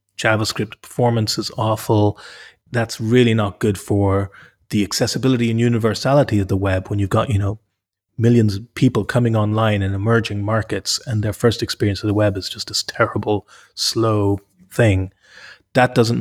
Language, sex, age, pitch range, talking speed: English, male, 30-49, 105-120 Hz, 165 wpm